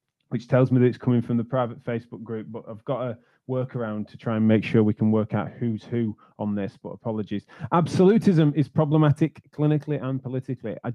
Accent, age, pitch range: British, 20-39, 110-140 Hz